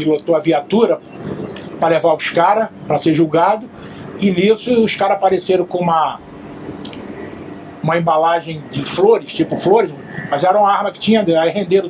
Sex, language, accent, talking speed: male, Portuguese, Brazilian, 155 wpm